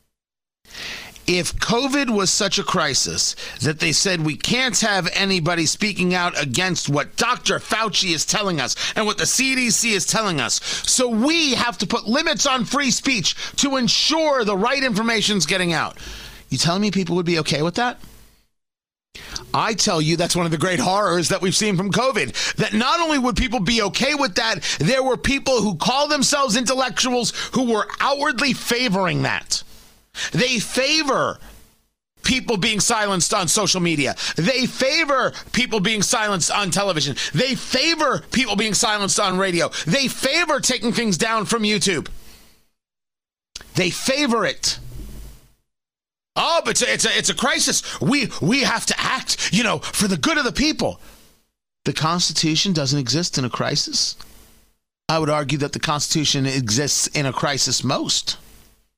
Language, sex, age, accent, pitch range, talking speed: English, male, 40-59, American, 175-245 Hz, 165 wpm